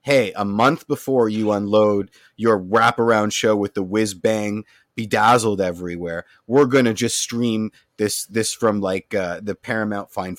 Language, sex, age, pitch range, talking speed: English, male, 30-49, 105-140 Hz, 155 wpm